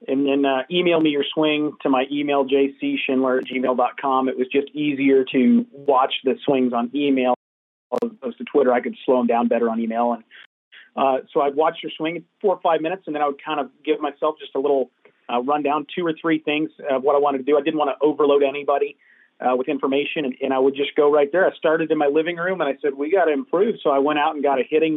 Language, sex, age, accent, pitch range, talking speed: English, male, 40-59, American, 135-155 Hz, 255 wpm